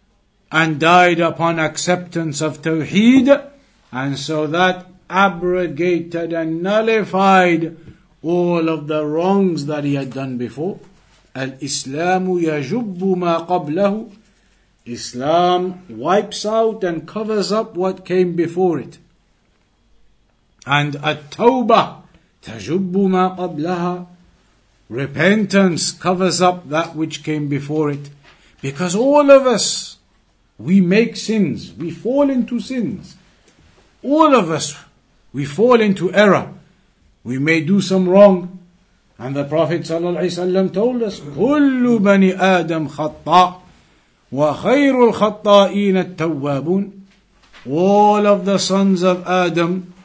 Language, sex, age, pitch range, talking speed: English, male, 60-79, 155-200 Hz, 105 wpm